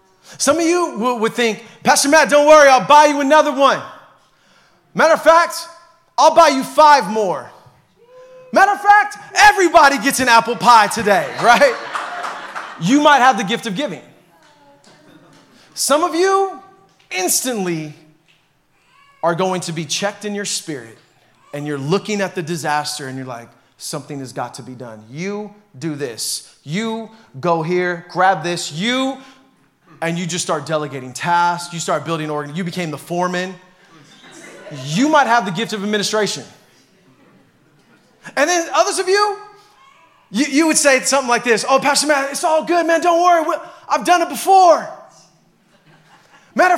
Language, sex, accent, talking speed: English, male, American, 160 wpm